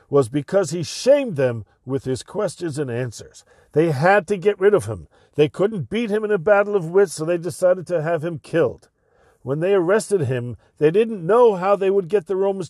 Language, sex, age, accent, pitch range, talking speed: English, male, 50-69, American, 130-200 Hz, 215 wpm